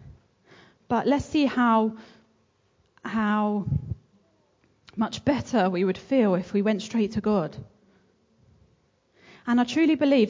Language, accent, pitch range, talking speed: English, British, 195-235 Hz, 115 wpm